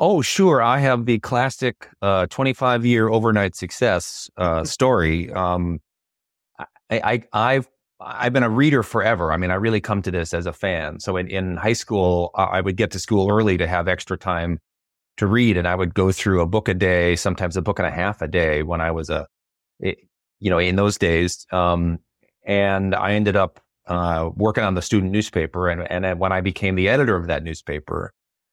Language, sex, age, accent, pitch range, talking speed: English, male, 30-49, American, 90-110 Hz, 205 wpm